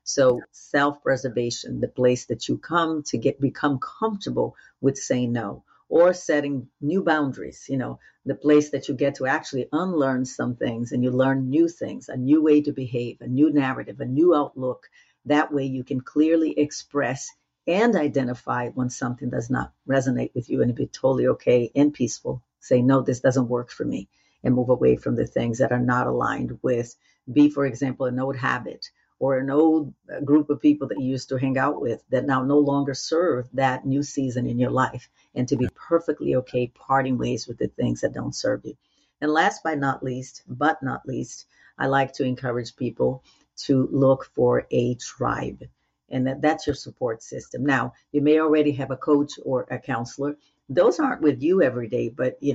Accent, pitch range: American, 125-145 Hz